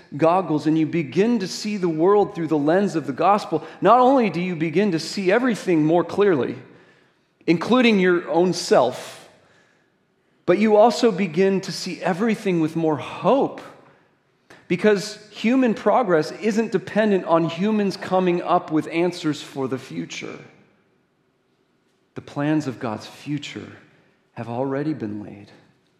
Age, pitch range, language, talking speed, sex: 40-59, 135-180 Hz, English, 140 wpm, male